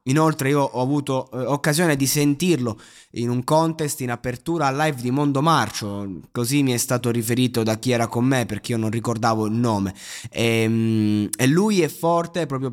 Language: Italian